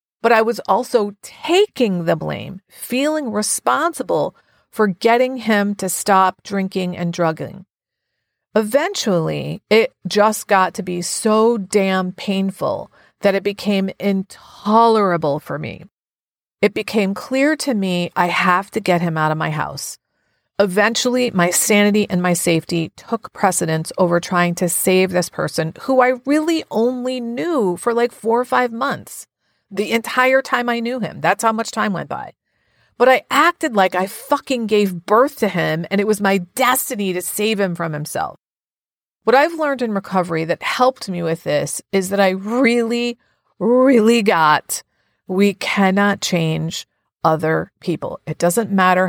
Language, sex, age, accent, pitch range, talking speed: English, female, 40-59, American, 180-235 Hz, 155 wpm